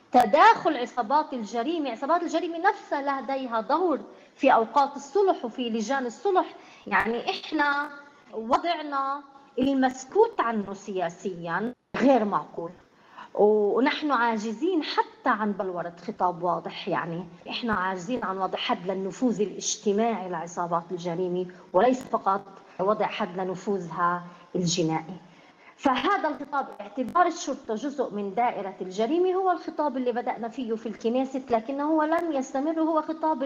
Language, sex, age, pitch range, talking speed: Arabic, female, 30-49, 205-285 Hz, 115 wpm